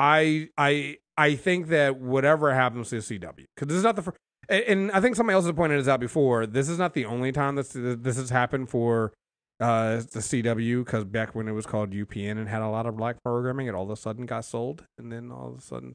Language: English